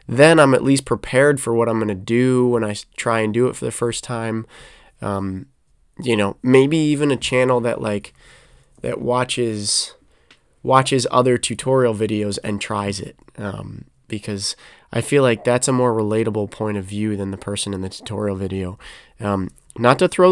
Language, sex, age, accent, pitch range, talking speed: English, male, 20-39, American, 105-125 Hz, 185 wpm